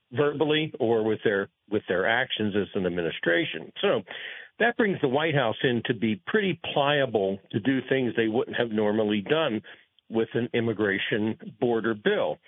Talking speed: 165 wpm